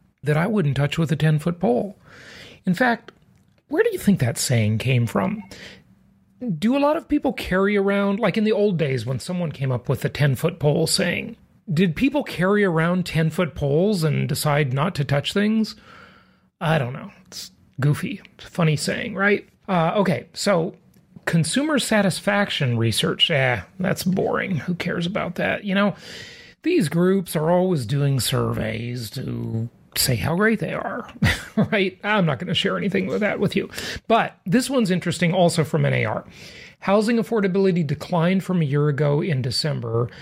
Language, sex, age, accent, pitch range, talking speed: English, male, 40-59, American, 140-195 Hz, 170 wpm